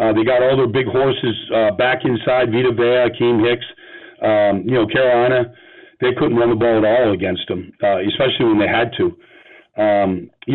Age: 50-69